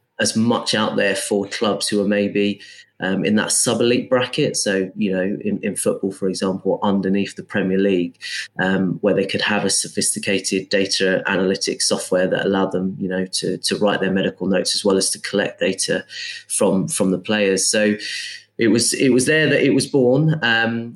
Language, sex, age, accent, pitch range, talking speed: English, male, 30-49, British, 95-110 Hz, 195 wpm